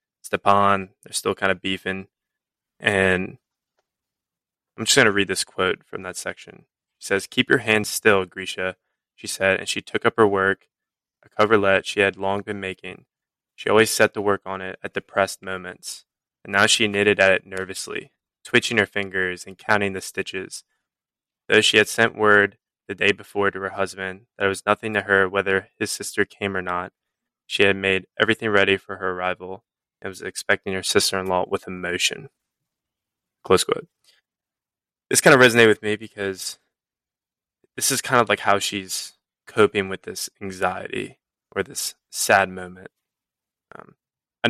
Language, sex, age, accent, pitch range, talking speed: English, male, 20-39, American, 95-105 Hz, 170 wpm